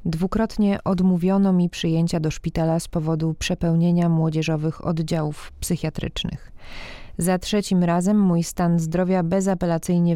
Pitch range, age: 160-185 Hz, 20-39